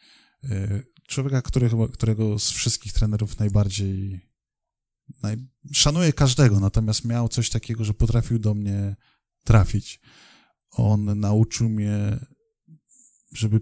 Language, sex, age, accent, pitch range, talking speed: Polish, male, 10-29, native, 100-120 Hz, 95 wpm